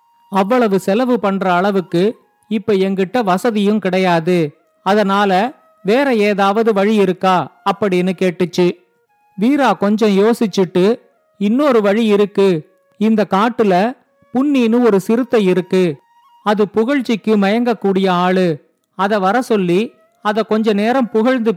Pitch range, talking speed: 190-230 Hz, 105 wpm